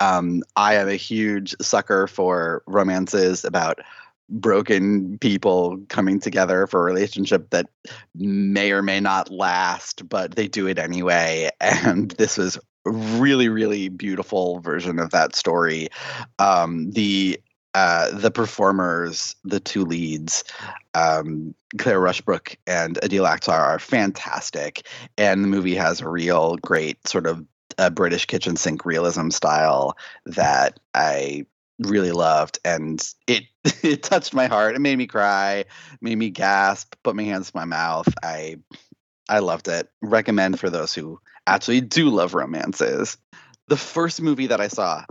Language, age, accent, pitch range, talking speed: English, 30-49, American, 85-105 Hz, 145 wpm